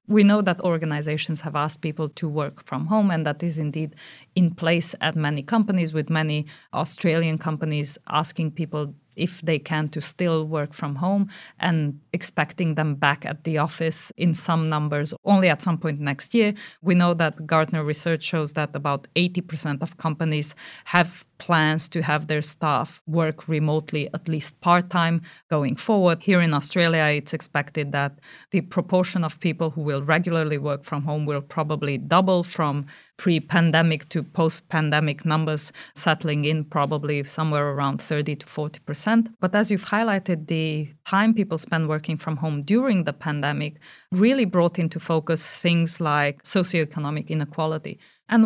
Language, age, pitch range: English, 30-49, 150-180 Hz